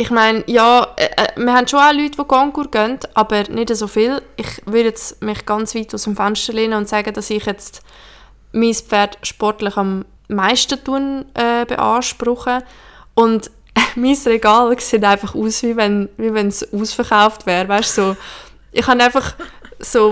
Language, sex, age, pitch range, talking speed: German, female, 20-39, 210-245 Hz, 165 wpm